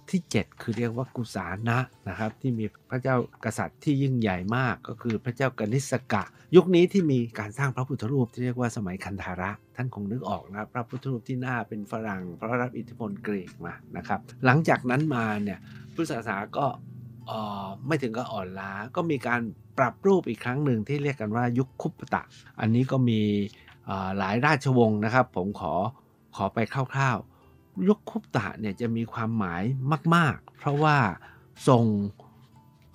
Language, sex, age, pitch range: Thai, male, 60-79, 105-130 Hz